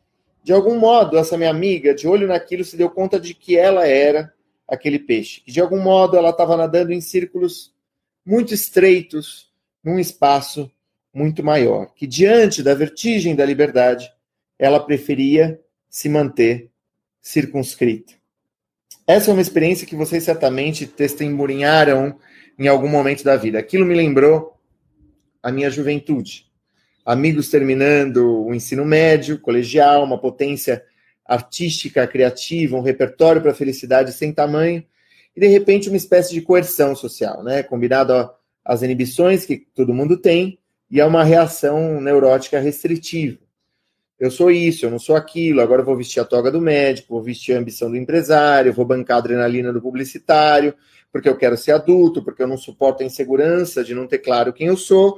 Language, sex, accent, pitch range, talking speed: Portuguese, male, Brazilian, 130-170 Hz, 160 wpm